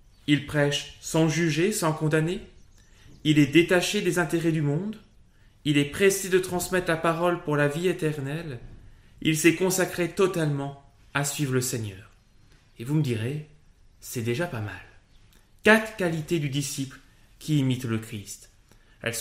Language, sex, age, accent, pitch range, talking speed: French, male, 20-39, French, 115-160 Hz, 155 wpm